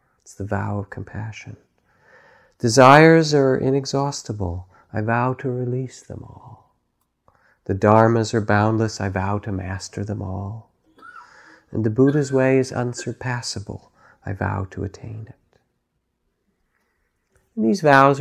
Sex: male